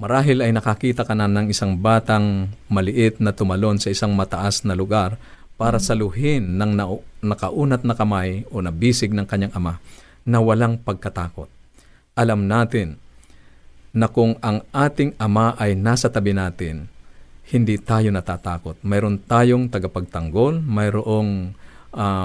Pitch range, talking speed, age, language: 95-120 Hz, 130 wpm, 50-69, Filipino